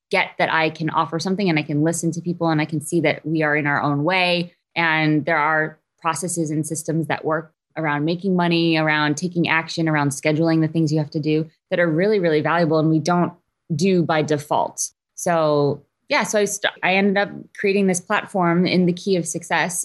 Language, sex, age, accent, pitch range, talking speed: English, female, 20-39, American, 155-180 Hz, 220 wpm